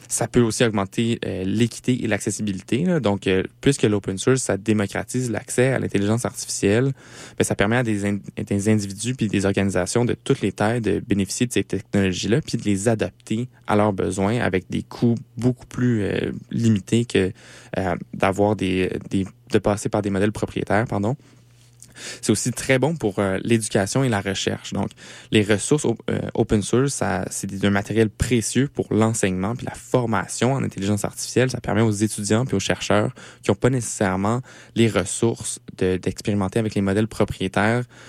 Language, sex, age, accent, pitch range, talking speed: French, male, 20-39, Canadian, 100-120 Hz, 175 wpm